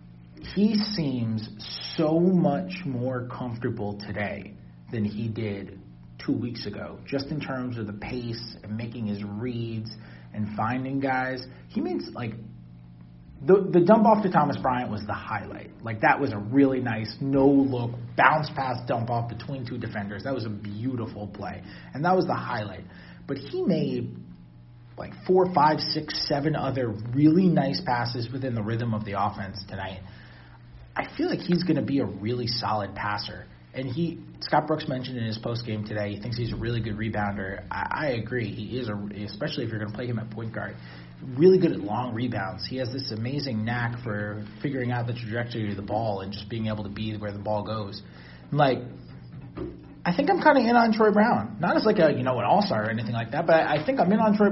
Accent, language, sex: American, English, male